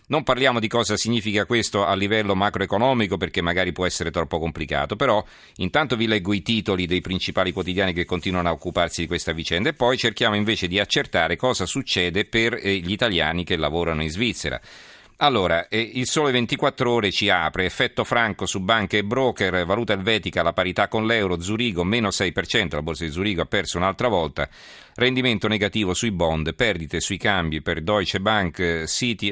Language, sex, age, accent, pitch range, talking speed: Italian, male, 40-59, native, 85-110 Hz, 180 wpm